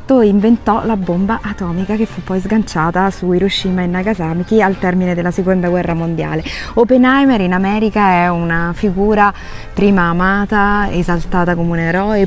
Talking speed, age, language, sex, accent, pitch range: 145 wpm, 20-39, Italian, female, native, 180-220 Hz